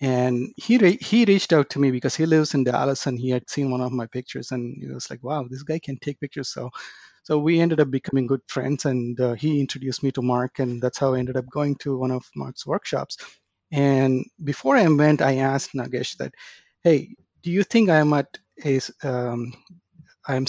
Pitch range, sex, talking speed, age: 125-155 Hz, male, 220 wpm, 30-49